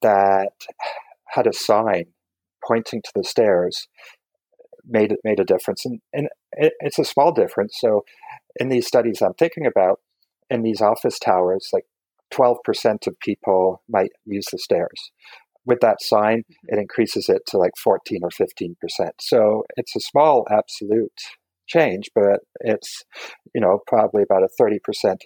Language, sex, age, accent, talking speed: English, male, 50-69, American, 160 wpm